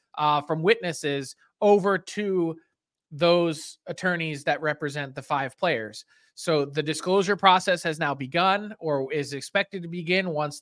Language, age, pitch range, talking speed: English, 20-39, 145-175 Hz, 140 wpm